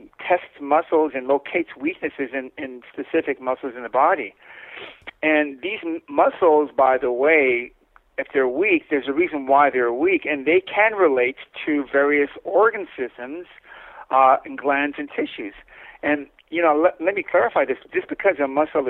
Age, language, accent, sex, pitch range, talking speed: 60-79, English, American, male, 135-170 Hz, 160 wpm